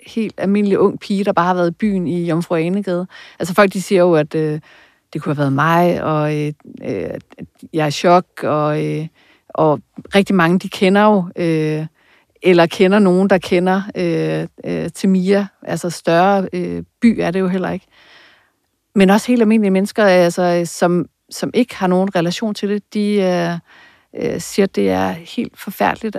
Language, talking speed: Danish, 170 wpm